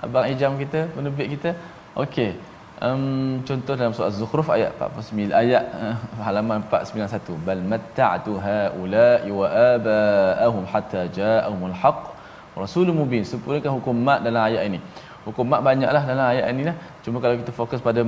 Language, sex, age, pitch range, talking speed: Malayalam, male, 20-39, 110-135 Hz, 155 wpm